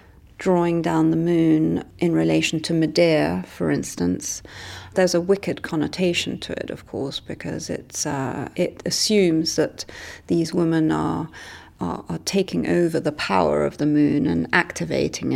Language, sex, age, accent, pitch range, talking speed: English, female, 30-49, British, 150-180 Hz, 140 wpm